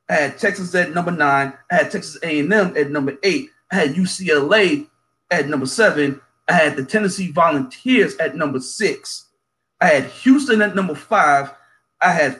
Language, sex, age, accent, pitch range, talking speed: English, male, 40-59, American, 155-230 Hz, 170 wpm